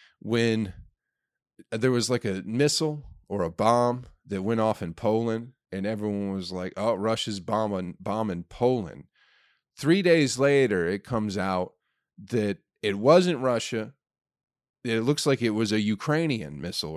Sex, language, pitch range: male, English, 100-135 Hz